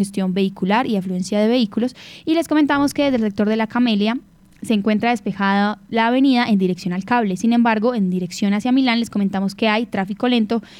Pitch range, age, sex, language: 195-235 Hz, 10-29, female, Spanish